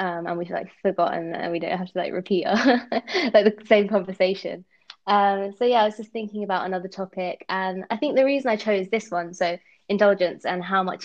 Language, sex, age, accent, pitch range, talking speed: English, female, 20-39, British, 180-210 Hz, 225 wpm